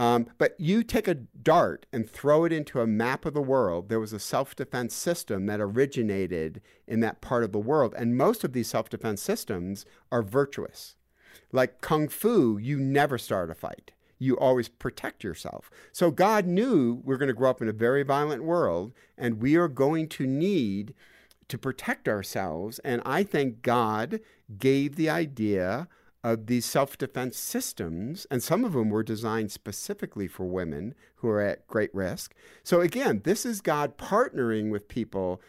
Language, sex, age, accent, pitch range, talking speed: English, male, 50-69, American, 110-140 Hz, 175 wpm